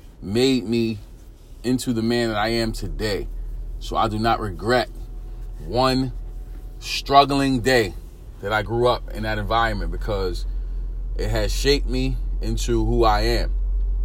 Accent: American